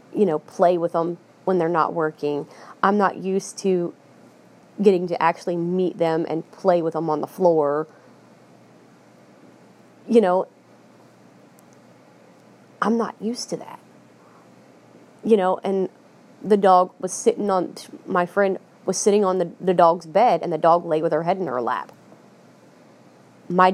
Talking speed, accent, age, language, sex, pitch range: 150 wpm, American, 30-49, English, female, 160-195 Hz